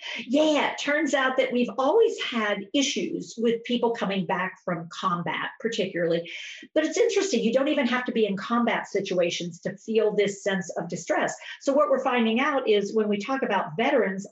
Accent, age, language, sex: American, 50-69, English, female